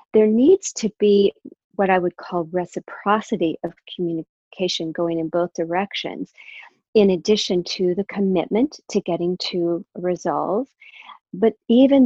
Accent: American